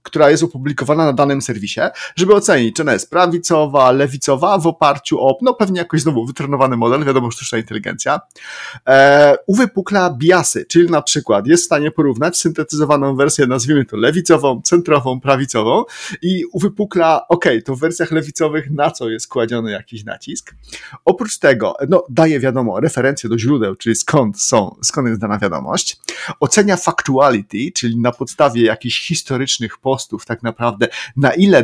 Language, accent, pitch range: Polish, native, 130-170 Hz